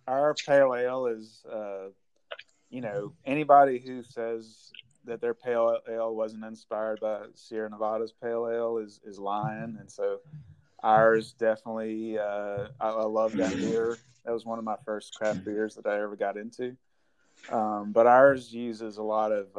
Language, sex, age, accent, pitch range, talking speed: English, male, 30-49, American, 105-115 Hz, 165 wpm